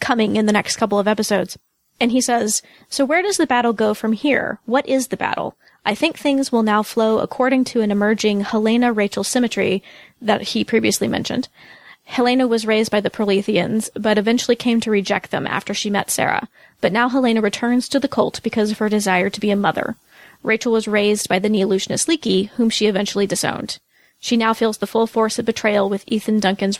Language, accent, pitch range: English, American, 200-235 Hz